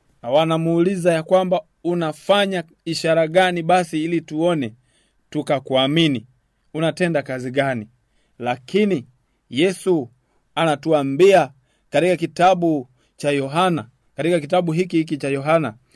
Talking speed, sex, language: 100 wpm, male, Swahili